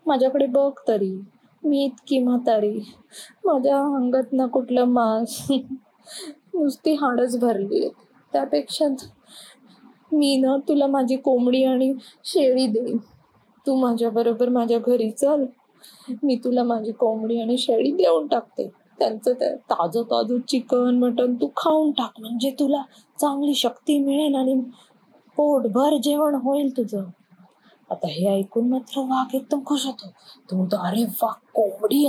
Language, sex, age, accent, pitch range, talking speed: Marathi, female, 20-39, native, 200-265 Hz, 130 wpm